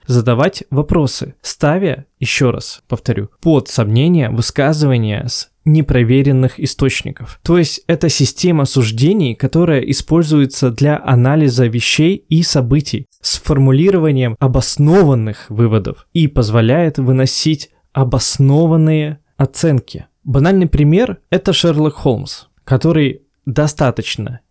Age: 20-39